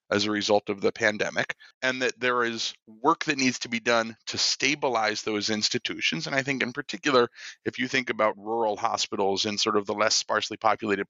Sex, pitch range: male, 105-125 Hz